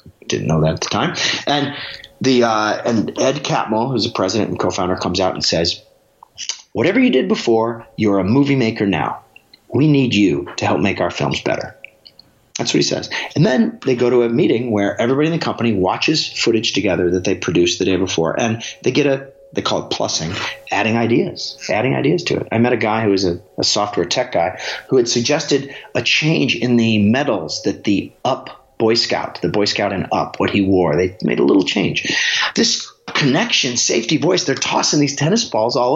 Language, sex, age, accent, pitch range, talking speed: English, male, 30-49, American, 105-140 Hz, 210 wpm